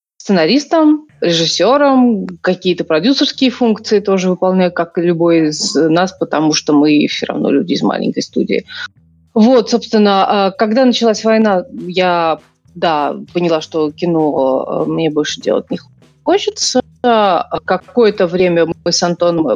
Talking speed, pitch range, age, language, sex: 125 wpm, 170-215 Hz, 30-49, Russian, female